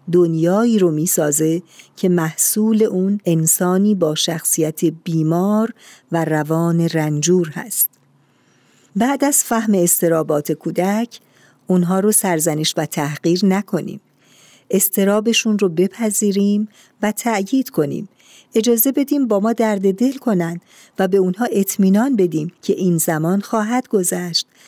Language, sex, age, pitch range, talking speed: Persian, female, 50-69, 165-215 Hz, 120 wpm